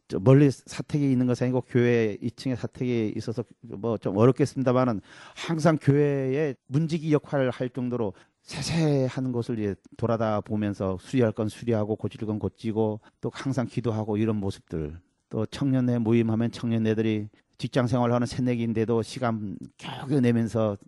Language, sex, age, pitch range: Korean, male, 40-59, 105-135 Hz